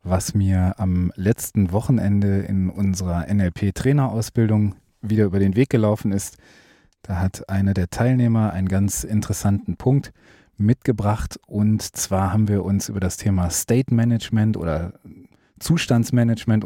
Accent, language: German, German